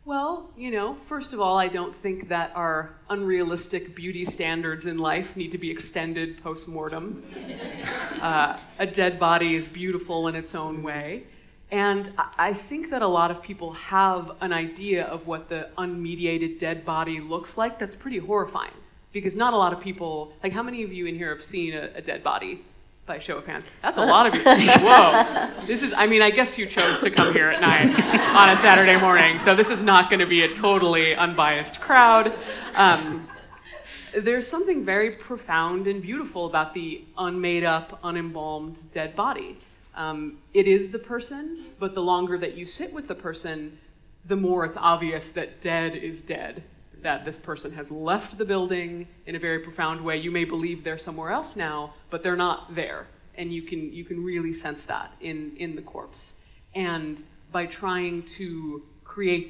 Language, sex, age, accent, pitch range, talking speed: English, female, 30-49, American, 160-195 Hz, 185 wpm